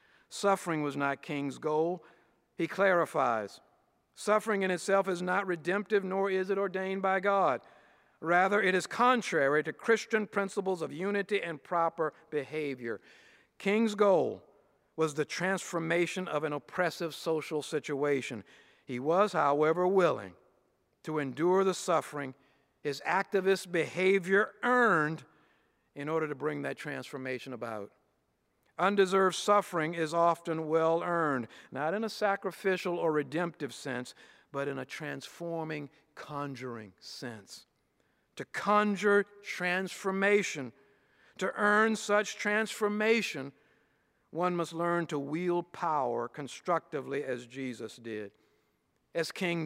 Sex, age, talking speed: male, 50-69, 120 wpm